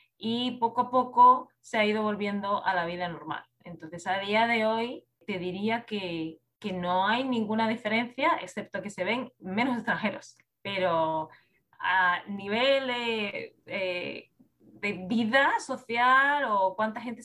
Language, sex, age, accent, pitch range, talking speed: Spanish, female, 20-39, Spanish, 185-230 Hz, 145 wpm